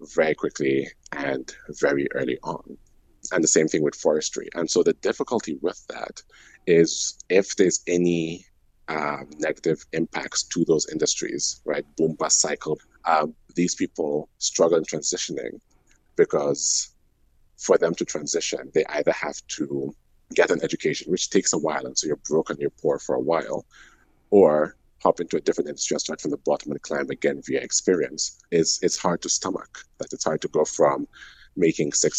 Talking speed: 170 wpm